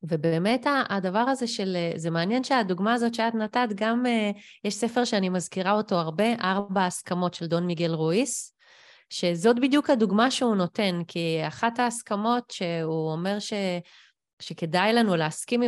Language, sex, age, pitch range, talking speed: Hebrew, female, 30-49, 175-245 Hz, 140 wpm